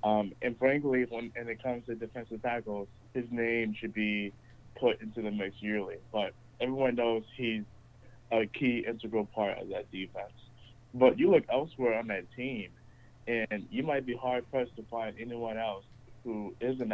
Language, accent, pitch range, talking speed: English, American, 110-125 Hz, 165 wpm